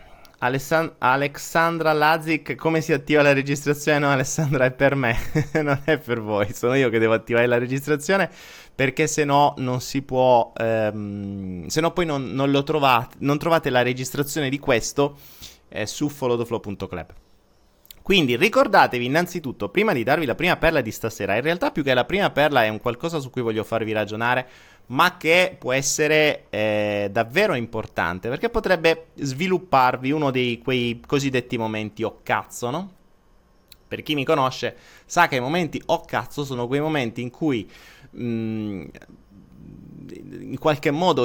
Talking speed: 160 wpm